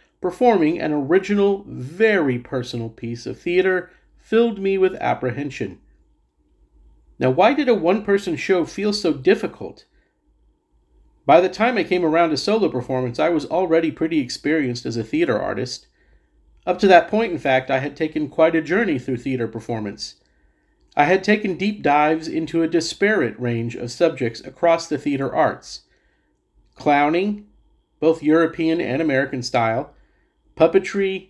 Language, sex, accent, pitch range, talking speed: English, male, American, 130-190 Hz, 145 wpm